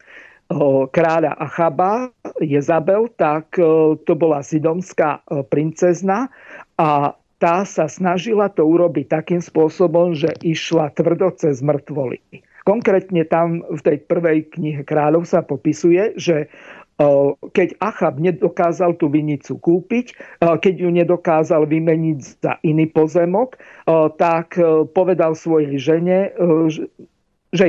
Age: 50-69